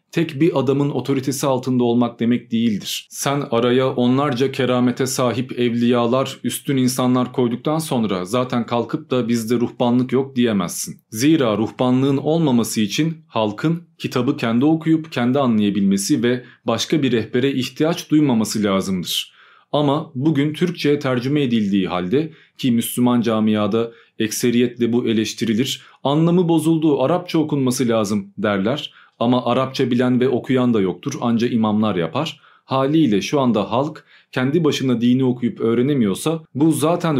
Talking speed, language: 130 wpm, Turkish